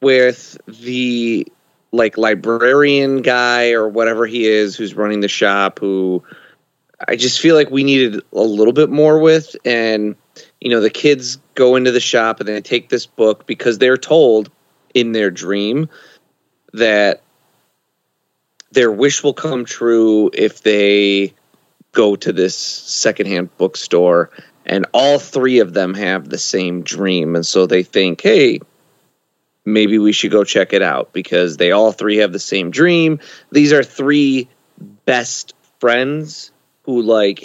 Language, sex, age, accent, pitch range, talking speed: English, male, 30-49, American, 105-135 Hz, 150 wpm